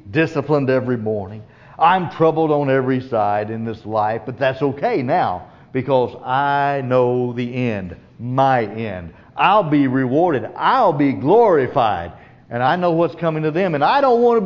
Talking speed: 165 wpm